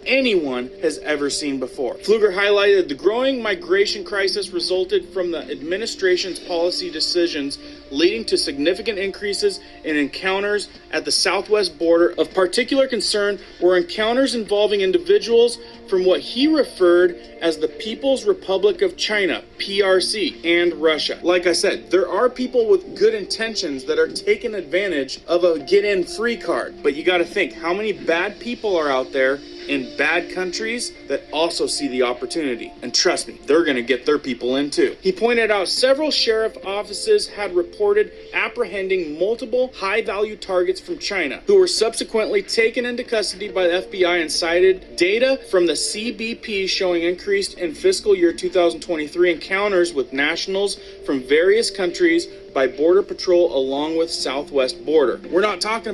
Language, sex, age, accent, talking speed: English, male, 30-49, American, 160 wpm